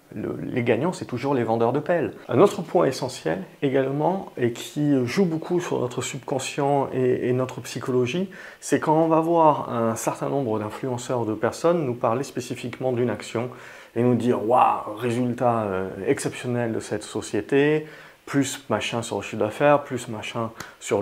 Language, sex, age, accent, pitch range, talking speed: French, male, 30-49, French, 125-170 Hz, 175 wpm